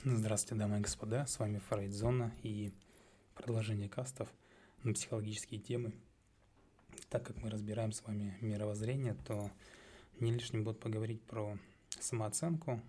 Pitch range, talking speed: 105-120 Hz, 130 wpm